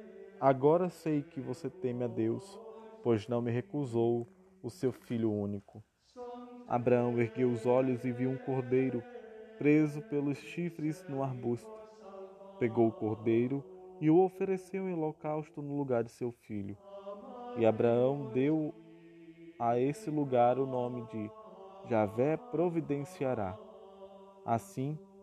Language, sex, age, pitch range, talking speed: Portuguese, male, 20-39, 125-180 Hz, 125 wpm